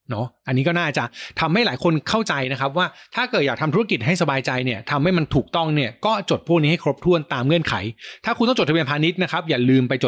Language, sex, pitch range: Thai, male, 125-170 Hz